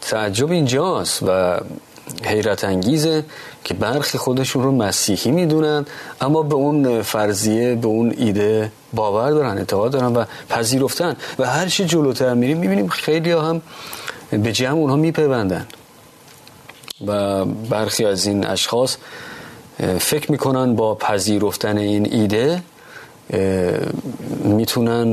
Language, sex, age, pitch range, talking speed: Persian, male, 30-49, 105-145 Hz, 115 wpm